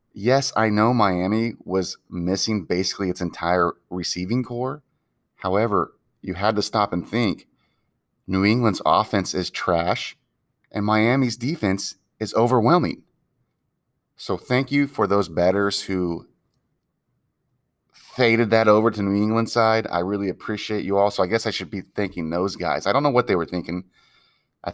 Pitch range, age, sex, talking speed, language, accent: 90-110 Hz, 30-49, male, 155 wpm, English, American